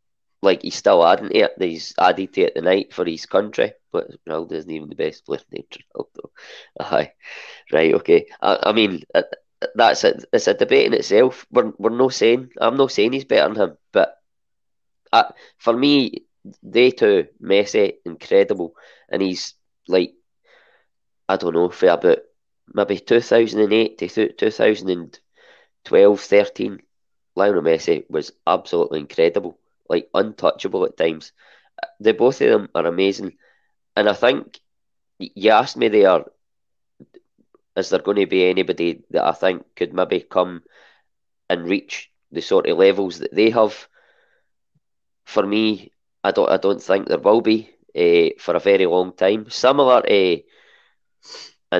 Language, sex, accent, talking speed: English, male, British, 160 wpm